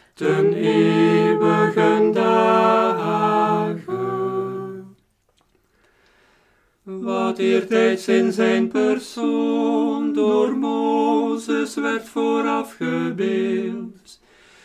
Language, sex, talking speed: Dutch, male, 50 wpm